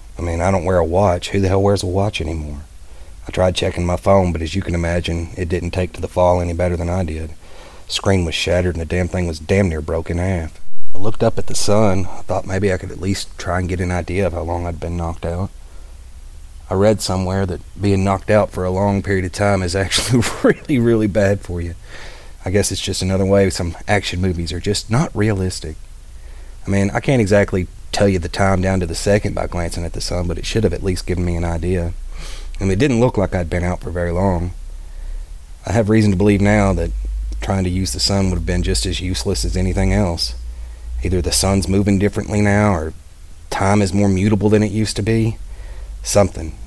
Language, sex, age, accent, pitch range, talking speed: English, male, 30-49, American, 85-100 Hz, 235 wpm